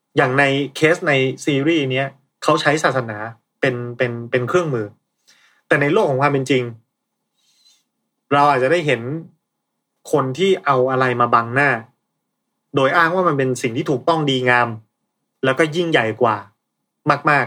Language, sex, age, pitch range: Thai, male, 20-39, 125-165 Hz